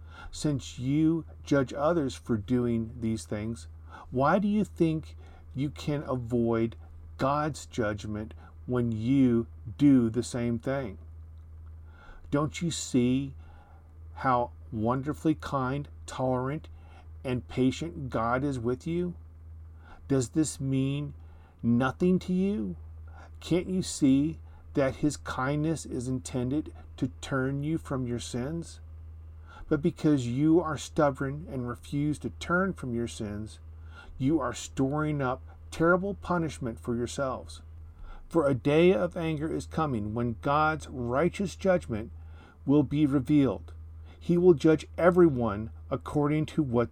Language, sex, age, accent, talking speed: English, male, 50-69, American, 125 wpm